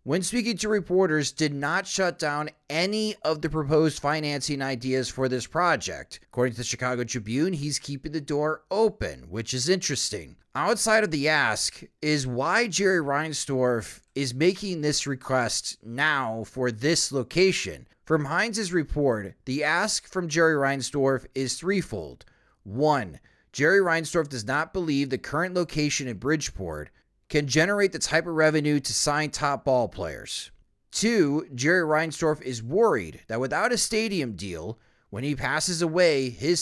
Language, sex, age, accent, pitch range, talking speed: English, male, 30-49, American, 125-160 Hz, 150 wpm